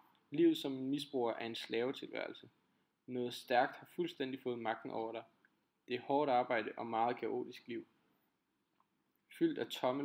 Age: 20-39